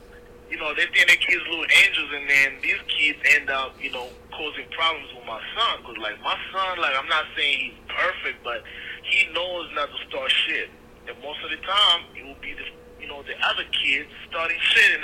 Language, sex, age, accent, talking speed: English, male, 30-49, American, 225 wpm